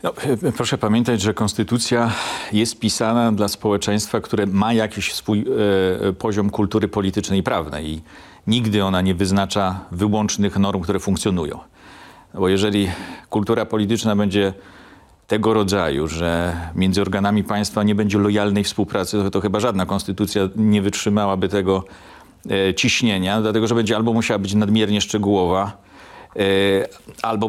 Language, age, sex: Polish, 40-59, male